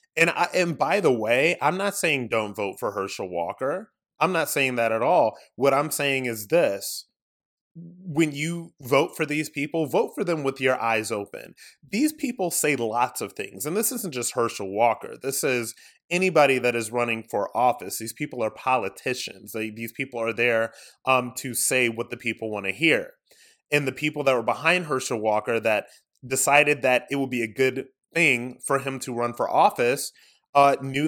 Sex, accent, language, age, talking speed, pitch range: male, American, English, 30-49, 195 wpm, 115-145 Hz